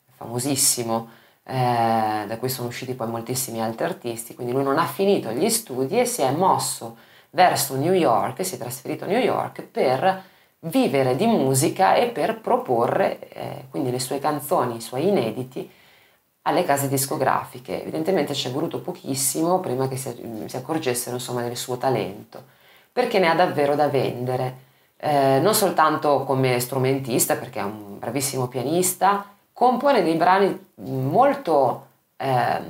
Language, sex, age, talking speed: Italian, female, 30-49, 150 wpm